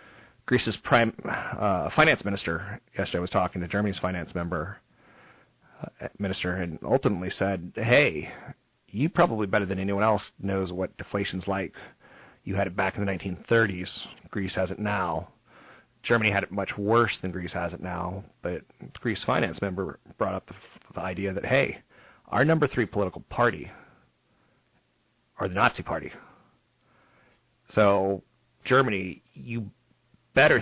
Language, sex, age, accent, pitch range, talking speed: English, male, 40-59, American, 95-115 Hz, 145 wpm